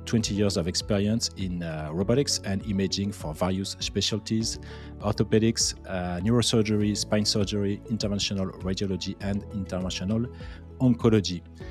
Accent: French